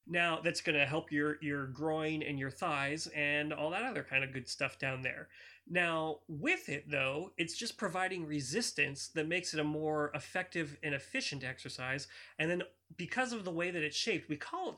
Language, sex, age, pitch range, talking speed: English, male, 30-49, 145-190 Hz, 205 wpm